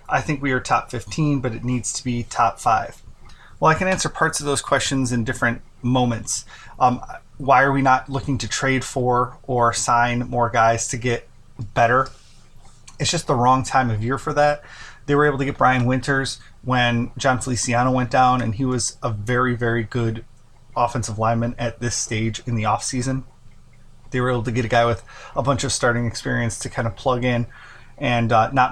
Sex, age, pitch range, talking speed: male, 20-39, 115-130 Hz, 205 wpm